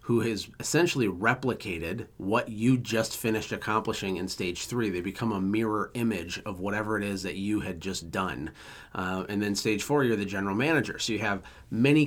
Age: 30-49